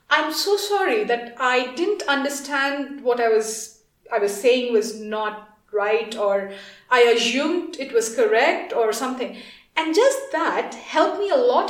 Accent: Indian